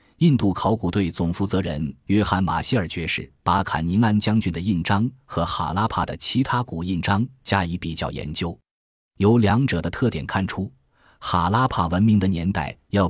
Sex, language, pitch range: male, Chinese, 85-110 Hz